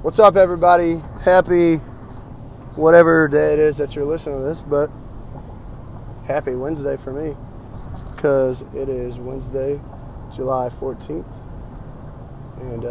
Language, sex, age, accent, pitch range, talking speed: English, male, 20-39, American, 120-145 Hz, 115 wpm